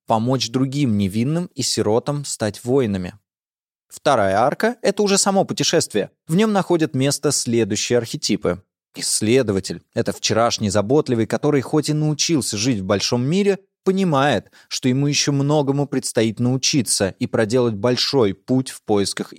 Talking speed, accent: 135 wpm, native